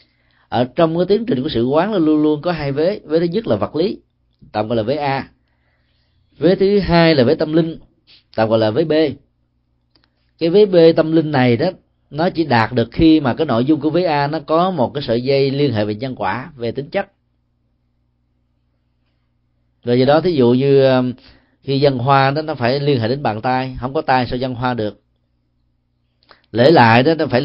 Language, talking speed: Vietnamese, 215 wpm